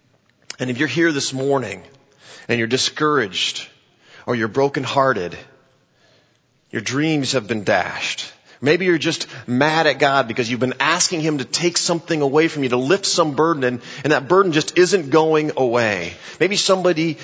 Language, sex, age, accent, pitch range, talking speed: English, male, 30-49, American, 125-155 Hz, 165 wpm